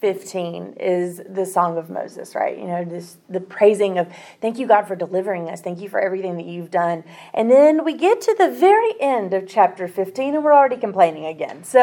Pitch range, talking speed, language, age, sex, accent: 195-255 Hz, 220 wpm, English, 30-49, female, American